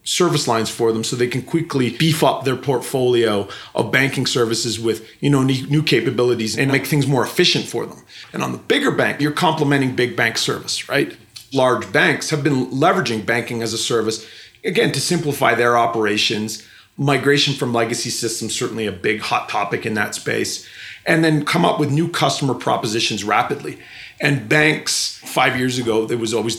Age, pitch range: 40-59, 110-135 Hz